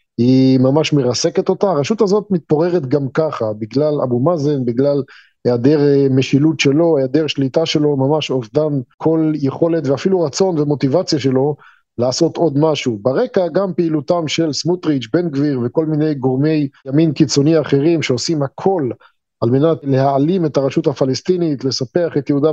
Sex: male